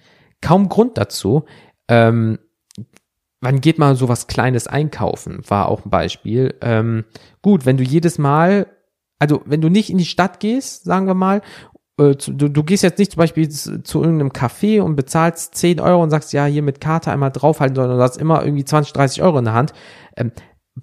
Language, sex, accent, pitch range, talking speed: German, male, German, 115-155 Hz, 200 wpm